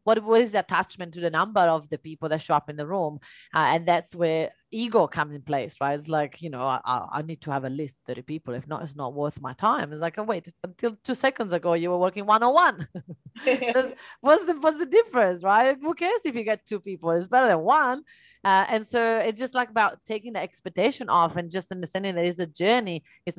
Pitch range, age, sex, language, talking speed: 170-220 Hz, 30-49, female, English, 240 wpm